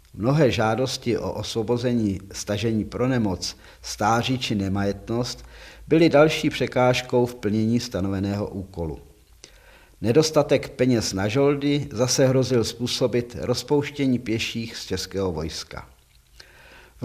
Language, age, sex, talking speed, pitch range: Czech, 50-69, male, 105 wpm, 105-130 Hz